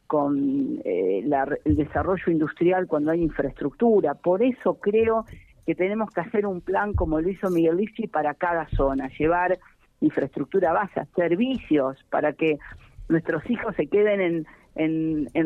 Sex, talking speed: female, 150 wpm